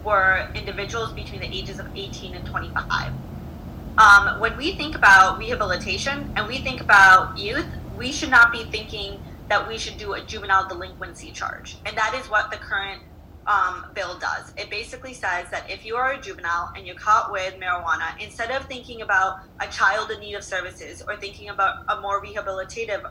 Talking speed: 185 wpm